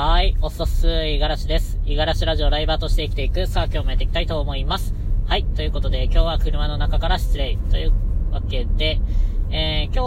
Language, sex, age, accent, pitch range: Japanese, female, 20-39, native, 80-100 Hz